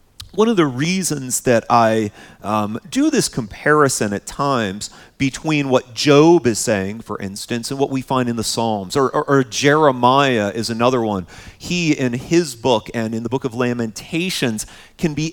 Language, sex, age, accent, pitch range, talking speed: English, male, 40-59, American, 115-160 Hz, 175 wpm